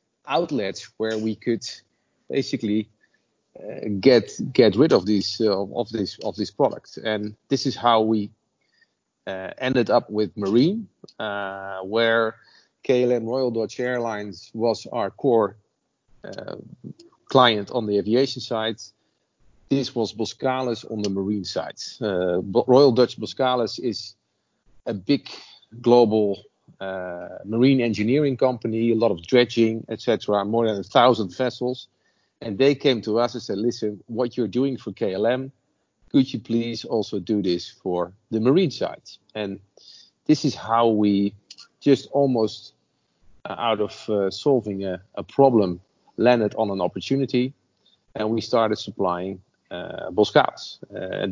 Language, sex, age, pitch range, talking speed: English, male, 40-59, 100-125 Hz, 140 wpm